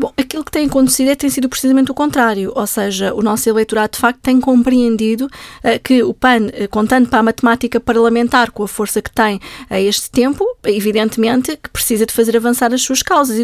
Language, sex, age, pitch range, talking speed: Portuguese, female, 20-39, 225-270 Hz, 215 wpm